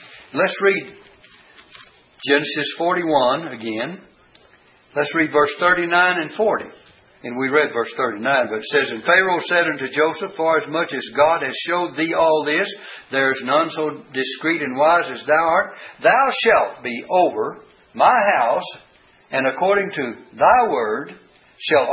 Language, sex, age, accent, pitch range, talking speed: English, male, 60-79, American, 140-190 Hz, 155 wpm